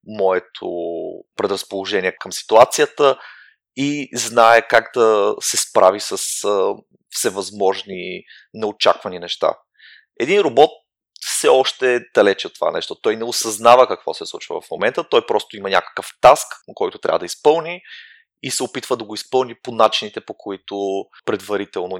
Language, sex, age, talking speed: Bulgarian, male, 30-49, 140 wpm